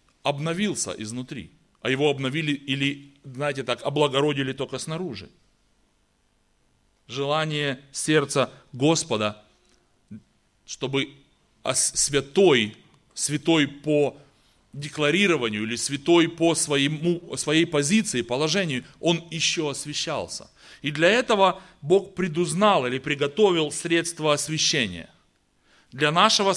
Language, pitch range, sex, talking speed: Russian, 130-170 Hz, male, 90 wpm